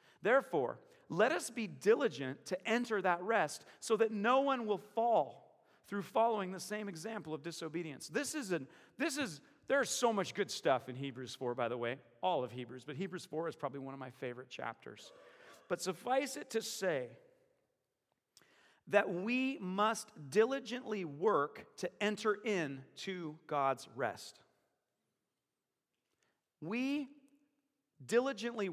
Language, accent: English, American